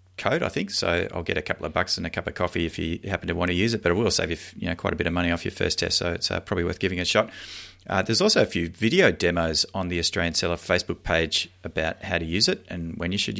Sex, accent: male, Australian